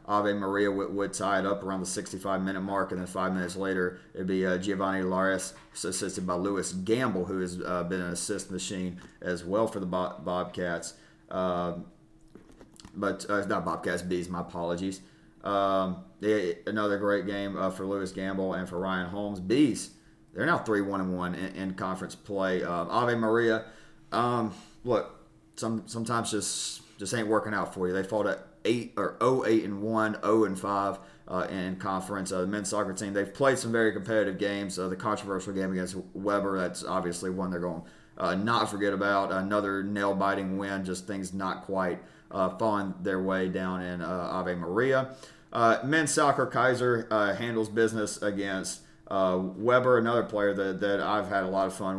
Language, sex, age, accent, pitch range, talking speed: English, male, 30-49, American, 95-105 Hz, 180 wpm